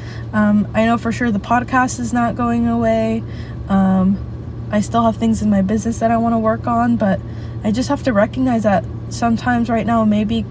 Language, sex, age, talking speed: English, female, 20-39, 205 wpm